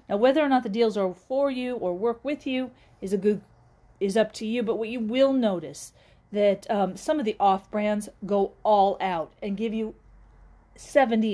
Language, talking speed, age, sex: English, 205 wpm, 40-59, female